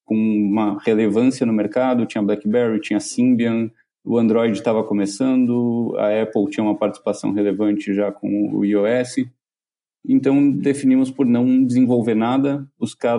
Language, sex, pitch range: Portuguese, male, 110-145 Hz